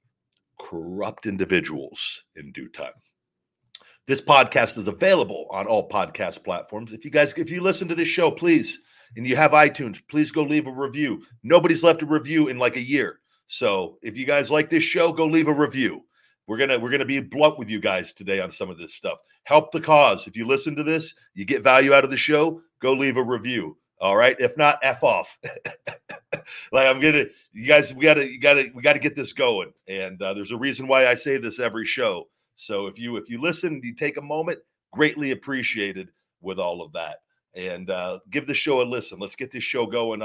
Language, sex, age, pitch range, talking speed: English, male, 40-59, 110-150 Hz, 220 wpm